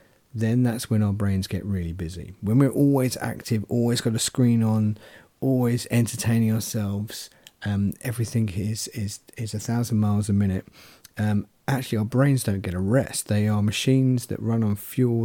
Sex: male